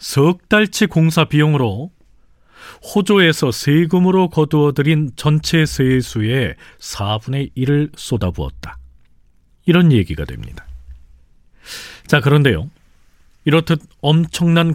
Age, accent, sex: 40-59, native, male